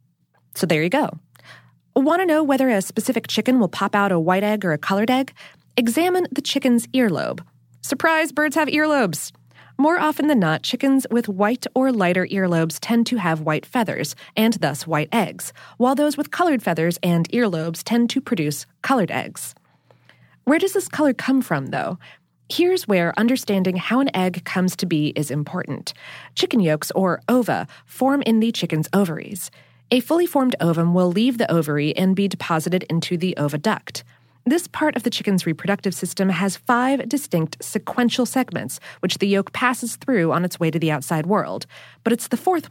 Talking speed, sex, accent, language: 180 wpm, female, American, English